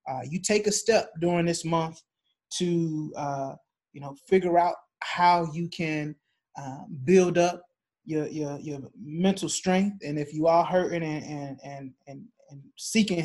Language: English